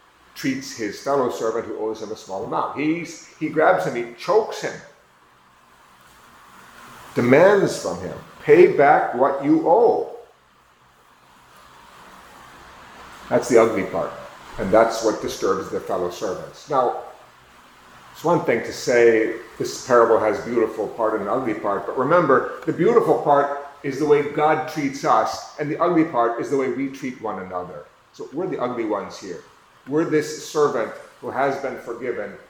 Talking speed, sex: 155 wpm, male